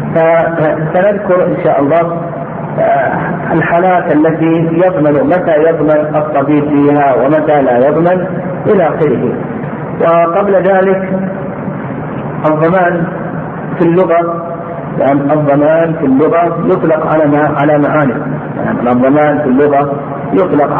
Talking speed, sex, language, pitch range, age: 100 wpm, male, Arabic, 145-165 Hz, 50-69